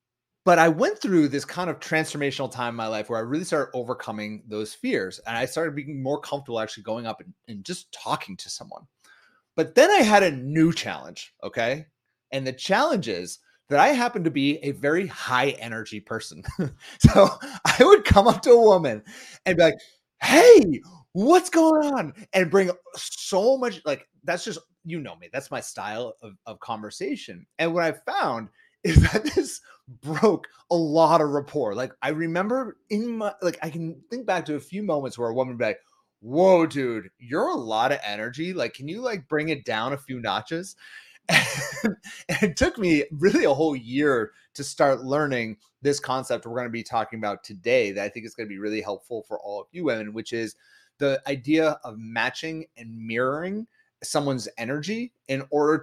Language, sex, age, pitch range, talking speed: English, male, 30-49, 125-185 Hz, 195 wpm